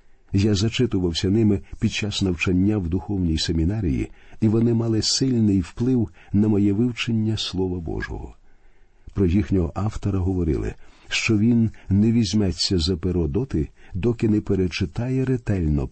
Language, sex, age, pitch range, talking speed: Ukrainian, male, 50-69, 90-115 Hz, 130 wpm